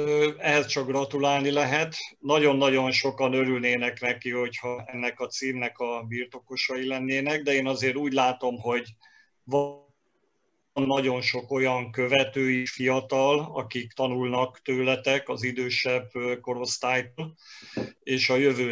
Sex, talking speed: male, 115 wpm